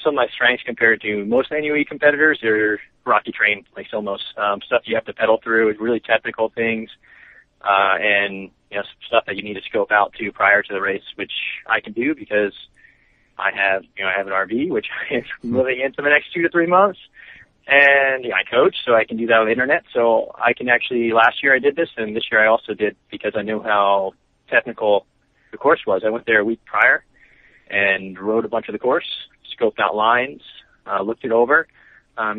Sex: male